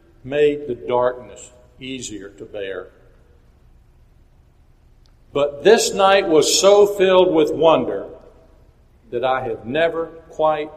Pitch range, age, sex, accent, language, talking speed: 145-210 Hz, 60-79, male, American, English, 105 wpm